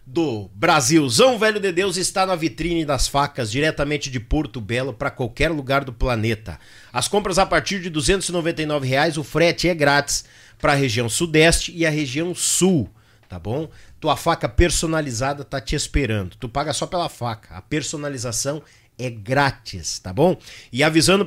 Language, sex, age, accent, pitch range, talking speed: Portuguese, male, 50-69, Brazilian, 135-185 Hz, 165 wpm